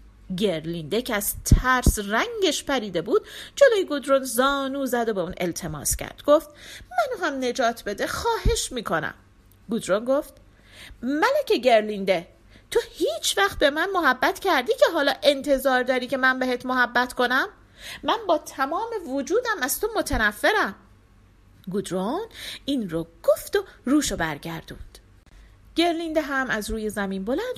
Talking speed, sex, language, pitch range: 135 wpm, female, Persian, 205-345 Hz